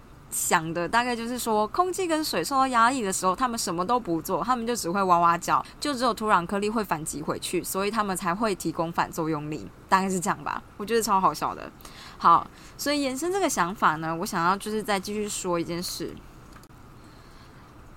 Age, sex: 20-39, female